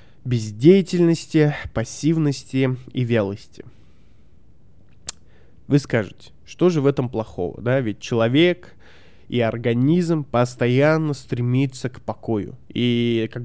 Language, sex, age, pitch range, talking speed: Russian, male, 20-39, 115-150 Hz, 100 wpm